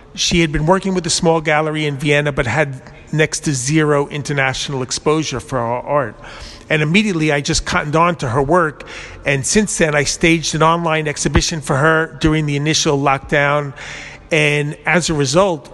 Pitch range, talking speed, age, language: 140-165 Hz, 180 wpm, 40-59, English